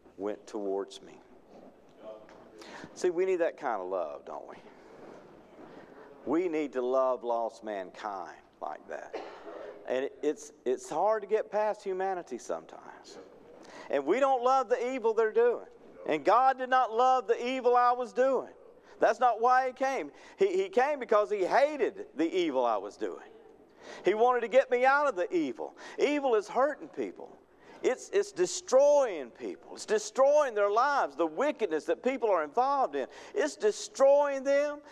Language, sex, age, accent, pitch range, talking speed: English, male, 50-69, American, 225-345 Hz, 160 wpm